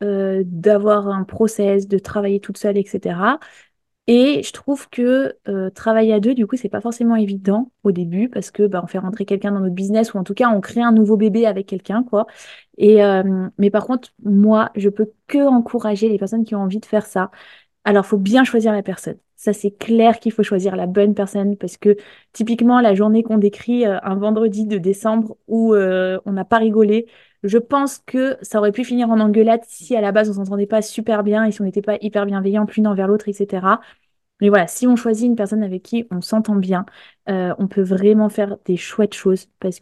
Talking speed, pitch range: 220 wpm, 200-230 Hz